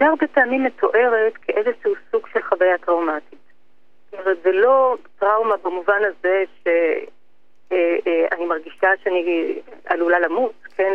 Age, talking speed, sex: 40-59, 125 wpm, female